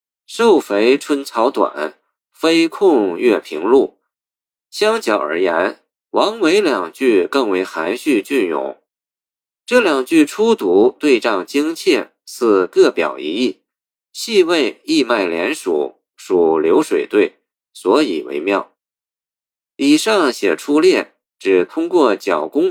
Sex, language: male, Chinese